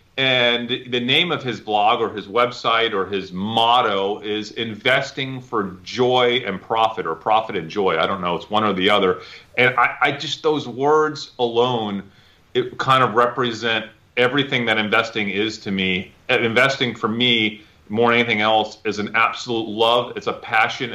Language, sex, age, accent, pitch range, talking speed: English, male, 30-49, American, 110-135 Hz, 180 wpm